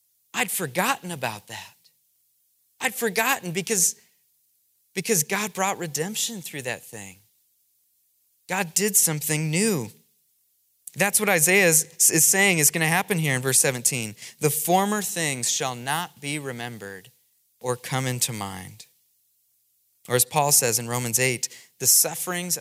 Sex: male